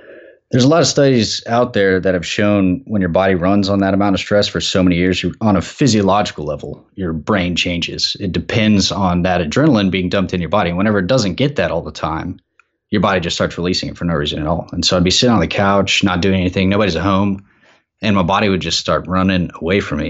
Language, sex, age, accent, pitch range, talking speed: English, male, 20-39, American, 90-105 Hz, 250 wpm